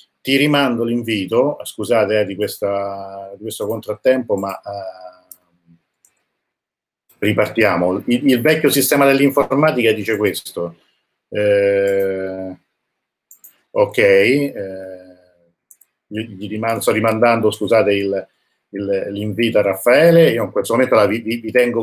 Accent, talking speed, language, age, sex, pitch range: native, 115 wpm, Italian, 50-69, male, 100-135 Hz